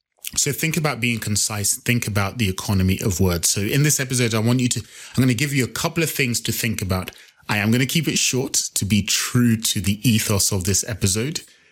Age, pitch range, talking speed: 20-39, 100-130 Hz, 240 wpm